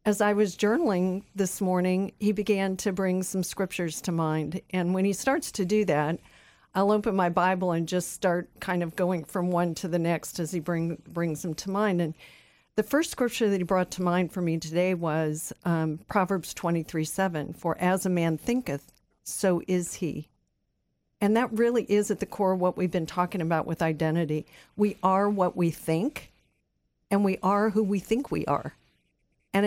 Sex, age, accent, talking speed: female, 50-69, American, 195 wpm